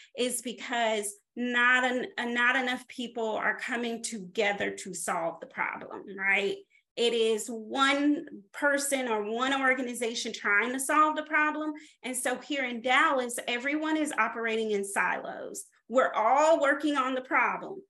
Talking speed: 150 wpm